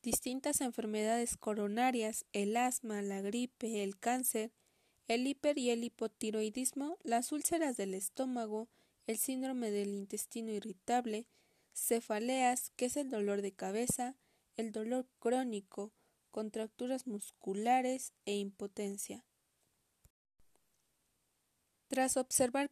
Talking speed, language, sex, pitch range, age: 105 wpm, Spanish, female, 210-250 Hz, 20-39